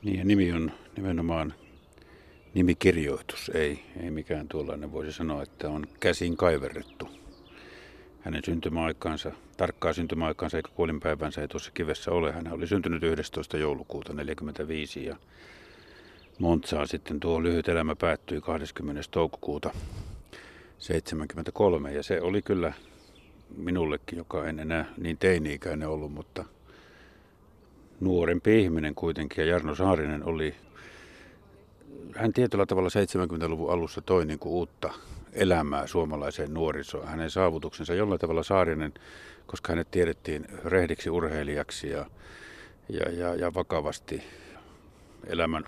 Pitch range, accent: 75-90 Hz, native